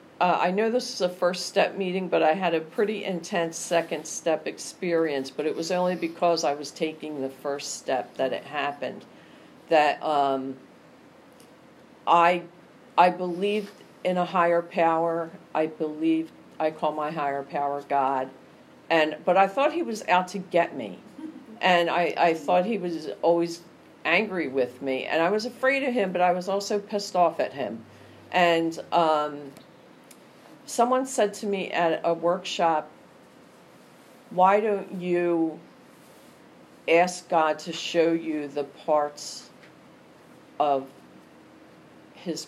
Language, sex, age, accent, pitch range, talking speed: English, female, 50-69, American, 150-185 Hz, 145 wpm